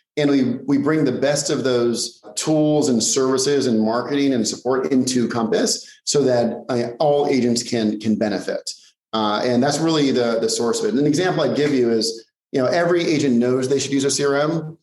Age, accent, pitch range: 30-49, American, 120-145 Hz